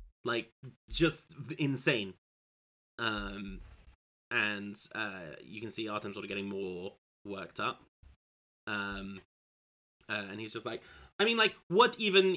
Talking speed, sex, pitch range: 130 wpm, male, 105-145 Hz